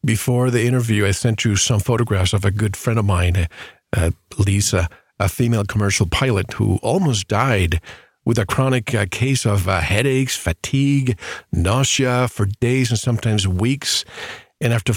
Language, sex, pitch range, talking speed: English, male, 100-125 Hz, 160 wpm